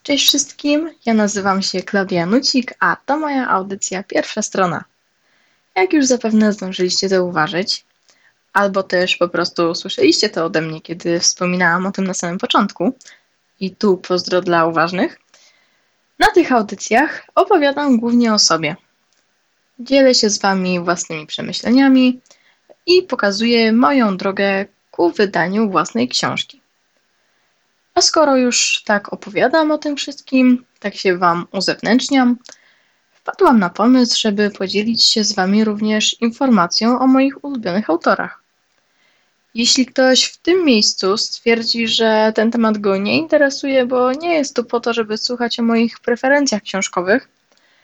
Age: 10-29